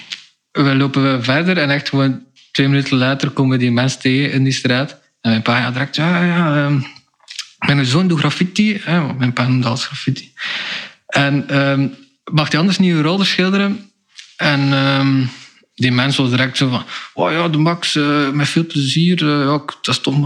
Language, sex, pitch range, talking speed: Dutch, male, 120-140 Hz, 185 wpm